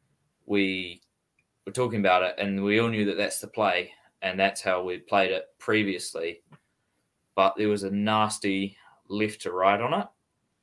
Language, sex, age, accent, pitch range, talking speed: English, male, 20-39, Australian, 90-105 Hz, 170 wpm